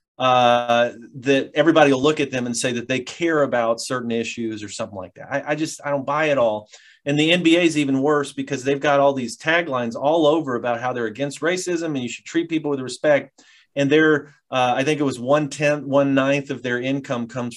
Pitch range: 115-145 Hz